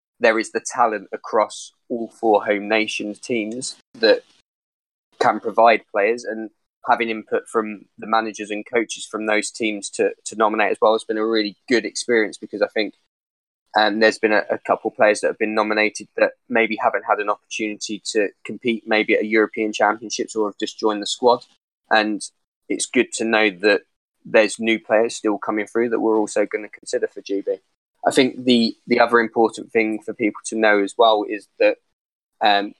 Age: 10-29